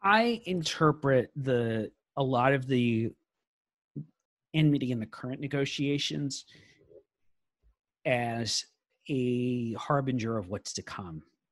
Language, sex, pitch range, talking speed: English, male, 110-130 Hz, 100 wpm